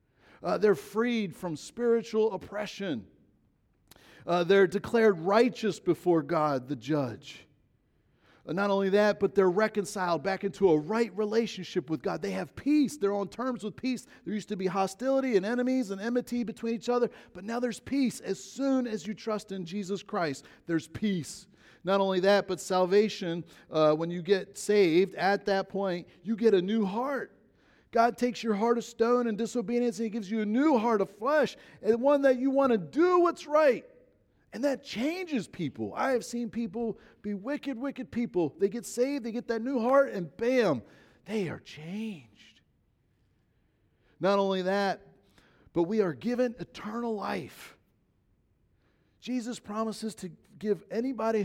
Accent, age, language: American, 40-59, English